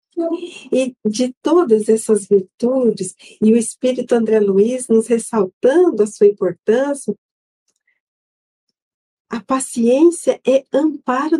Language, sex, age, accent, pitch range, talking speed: Portuguese, female, 50-69, Brazilian, 240-320 Hz, 100 wpm